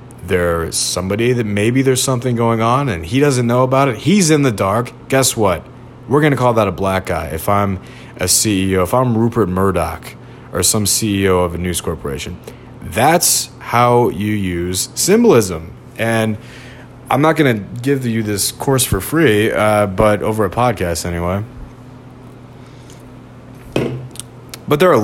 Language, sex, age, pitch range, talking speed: English, male, 30-49, 95-125 Hz, 165 wpm